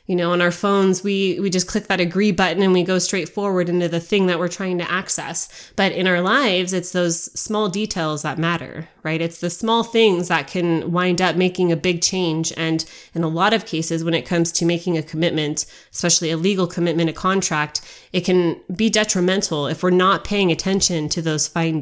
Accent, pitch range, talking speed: American, 170-205 Hz, 215 wpm